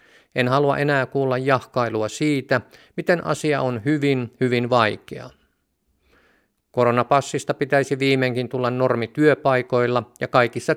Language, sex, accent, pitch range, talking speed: Finnish, male, native, 115-135 Hz, 110 wpm